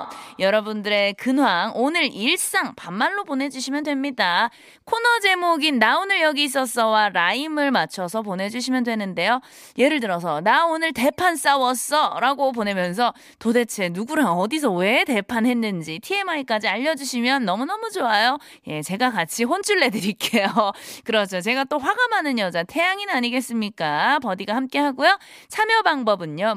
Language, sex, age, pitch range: Korean, female, 20-39, 225-335 Hz